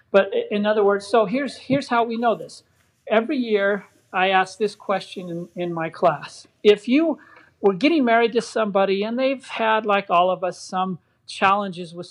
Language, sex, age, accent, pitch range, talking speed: English, male, 40-59, American, 175-225 Hz, 190 wpm